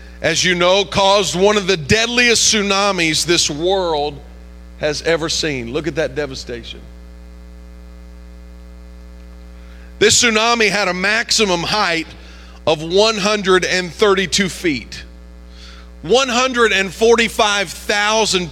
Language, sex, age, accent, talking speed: English, male, 40-59, American, 90 wpm